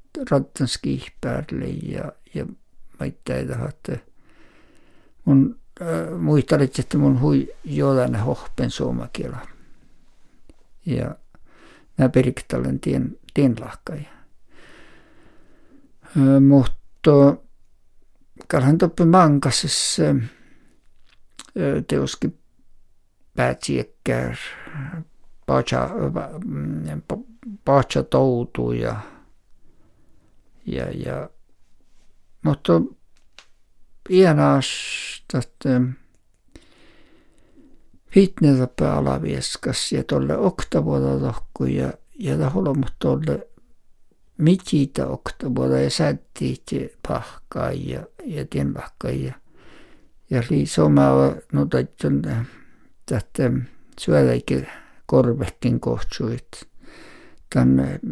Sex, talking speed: male, 65 wpm